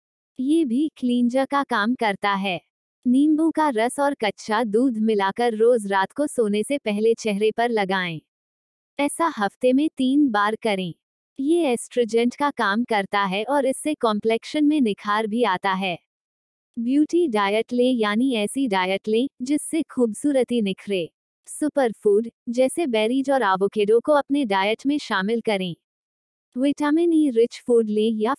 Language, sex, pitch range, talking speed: Hindi, female, 210-280 Hz, 150 wpm